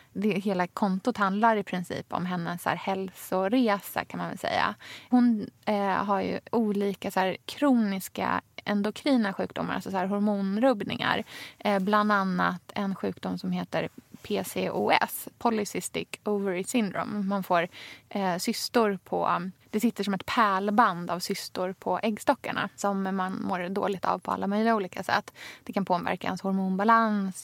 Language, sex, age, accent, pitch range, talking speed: Swedish, female, 20-39, native, 190-225 Hz, 150 wpm